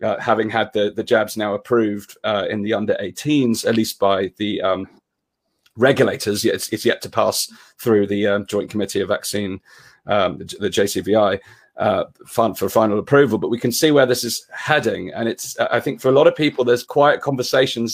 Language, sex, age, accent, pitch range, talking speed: English, male, 30-49, British, 110-135 Hz, 205 wpm